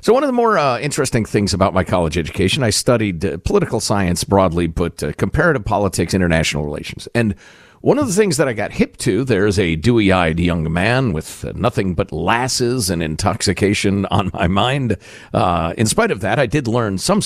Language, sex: English, male